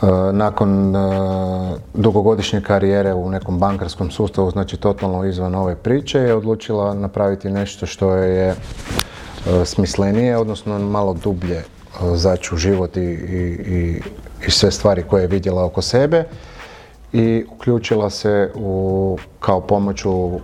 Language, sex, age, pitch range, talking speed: English, male, 30-49, 90-110 Hz, 120 wpm